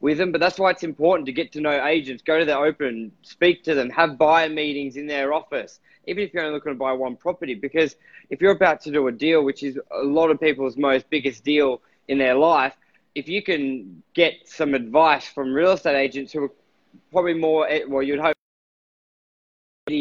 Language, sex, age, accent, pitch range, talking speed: English, male, 20-39, Australian, 140-170 Hz, 215 wpm